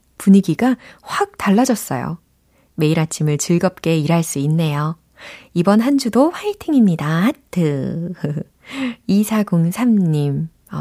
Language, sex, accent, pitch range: Korean, female, native, 155-220 Hz